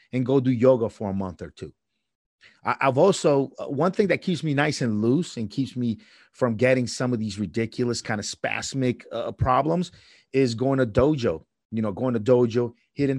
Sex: male